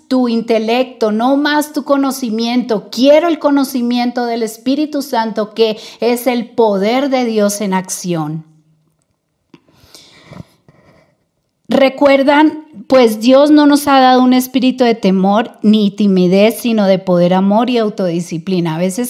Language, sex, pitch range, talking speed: Spanish, female, 200-255 Hz, 130 wpm